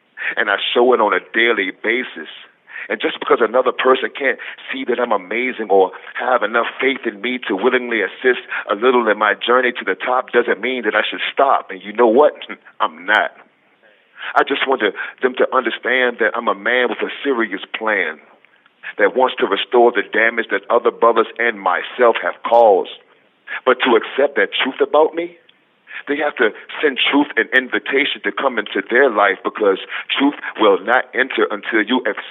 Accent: American